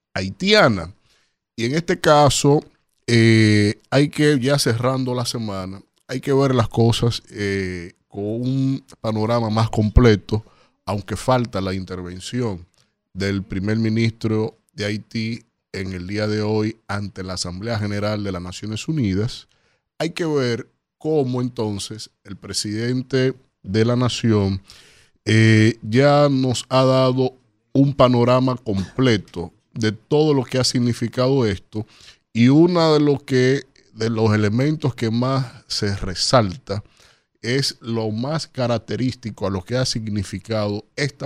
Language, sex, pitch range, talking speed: Spanish, male, 100-130 Hz, 130 wpm